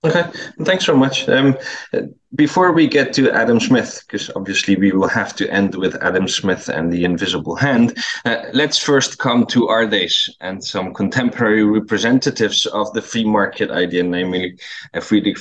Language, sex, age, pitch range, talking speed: English, male, 20-39, 100-135 Hz, 165 wpm